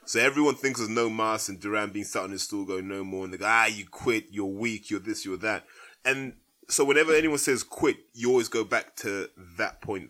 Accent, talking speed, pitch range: British, 245 wpm, 105-140 Hz